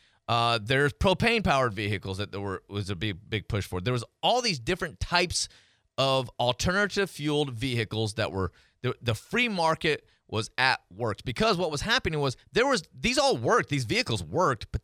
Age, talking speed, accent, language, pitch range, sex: 30-49, 190 wpm, American, English, 105-150 Hz, male